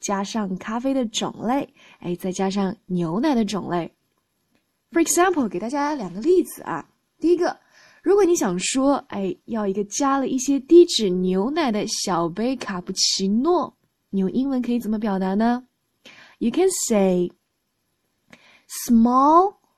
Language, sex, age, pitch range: Chinese, female, 10-29, 200-295 Hz